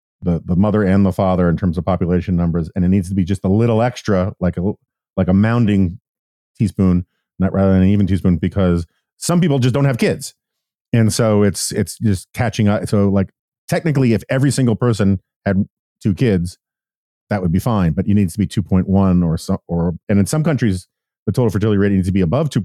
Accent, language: American, English